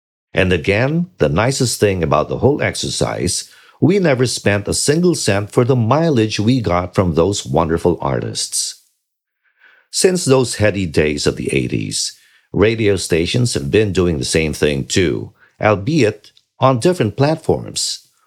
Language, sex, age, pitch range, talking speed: English, male, 50-69, 90-125 Hz, 145 wpm